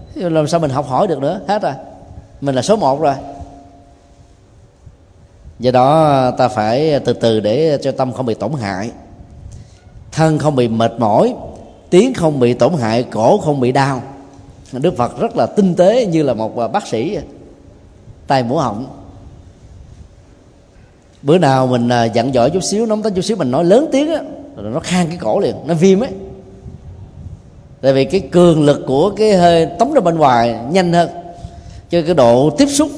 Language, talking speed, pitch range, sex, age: Vietnamese, 180 wpm, 110-165 Hz, male, 20-39